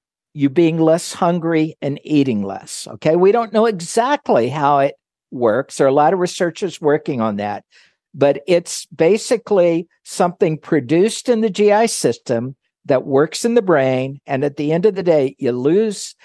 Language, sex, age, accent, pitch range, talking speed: English, male, 60-79, American, 150-195 Hz, 175 wpm